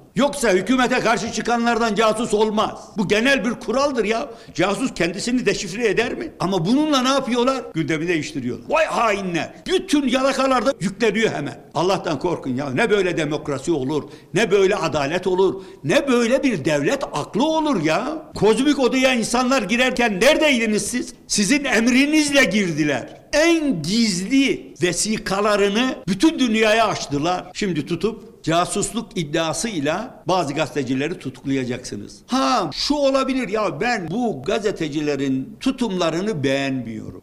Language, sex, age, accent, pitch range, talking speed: Turkish, male, 60-79, native, 165-245 Hz, 125 wpm